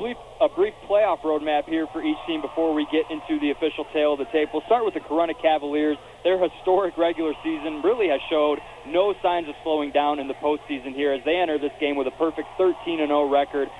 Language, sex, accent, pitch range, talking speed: English, male, American, 140-165 Hz, 220 wpm